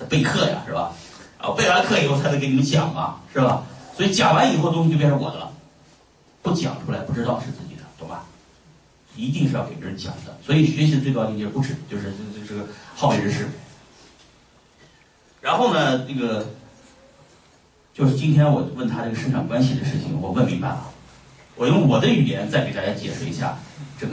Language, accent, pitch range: Chinese, native, 120-150 Hz